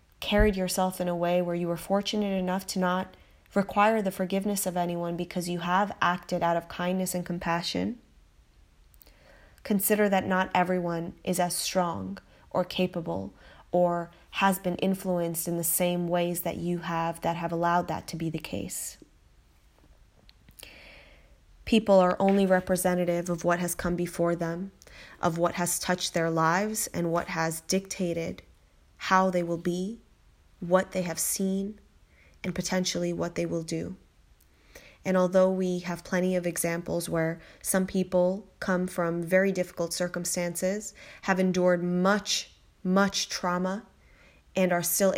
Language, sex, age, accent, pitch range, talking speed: English, female, 20-39, American, 170-185 Hz, 145 wpm